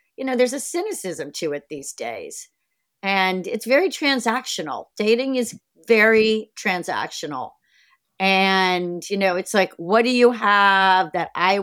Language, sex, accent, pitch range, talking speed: English, female, American, 190-245 Hz, 145 wpm